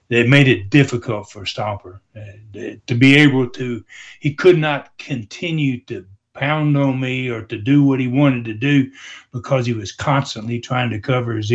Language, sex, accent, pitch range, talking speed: English, male, American, 105-135 Hz, 180 wpm